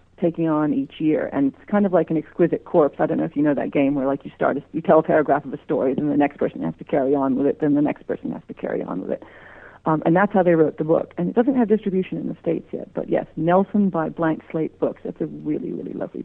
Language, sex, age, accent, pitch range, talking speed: English, female, 40-59, American, 145-190 Hz, 295 wpm